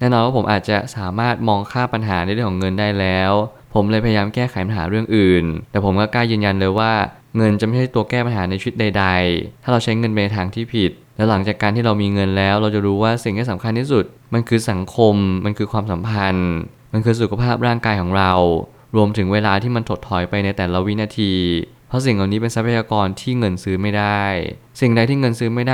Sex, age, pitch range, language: male, 20-39, 100-120 Hz, Thai